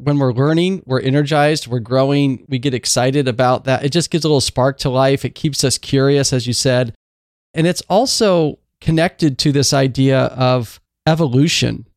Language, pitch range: English, 125-150 Hz